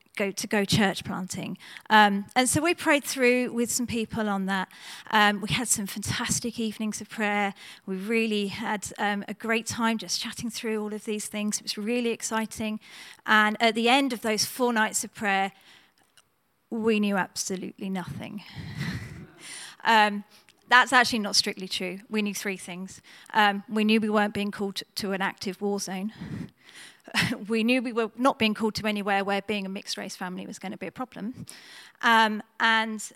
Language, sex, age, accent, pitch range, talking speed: English, female, 30-49, British, 200-225 Hz, 185 wpm